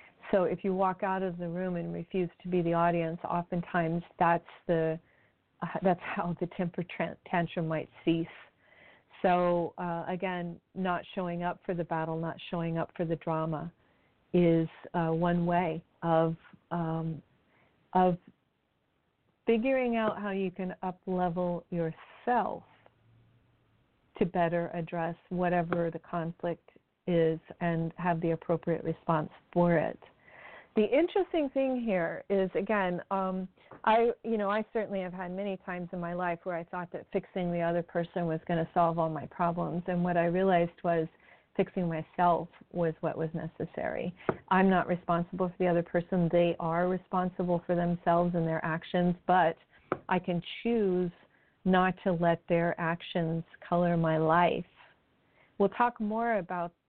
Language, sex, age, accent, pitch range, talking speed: English, female, 50-69, American, 165-185 Hz, 150 wpm